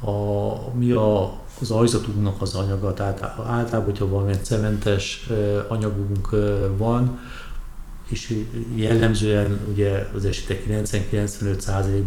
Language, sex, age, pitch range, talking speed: Hungarian, male, 60-79, 95-105 Hz, 90 wpm